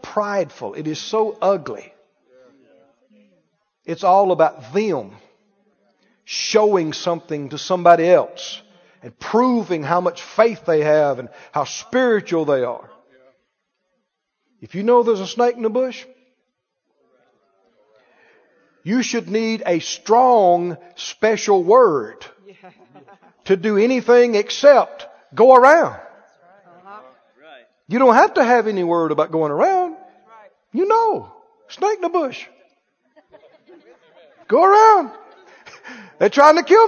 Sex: male